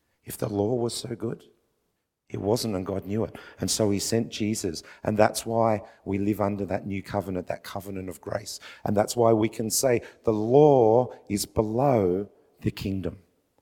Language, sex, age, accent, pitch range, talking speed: English, male, 50-69, Australian, 100-140 Hz, 185 wpm